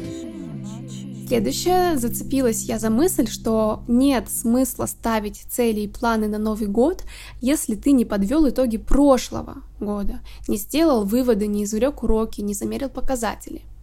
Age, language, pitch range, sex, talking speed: 20-39, Russian, 210-260 Hz, female, 135 wpm